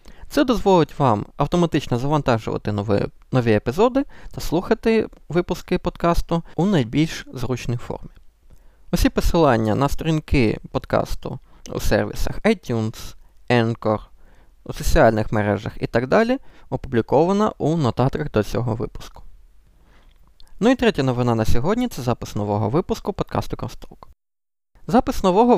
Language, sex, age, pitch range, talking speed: Ukrainian, male, 20-39, 115-185 Hz, 120 wpm